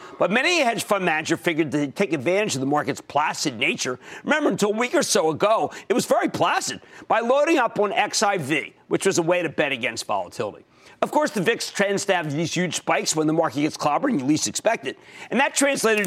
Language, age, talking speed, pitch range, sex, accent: English, 50-69, 225 wpm, 160-260 Hz, male, American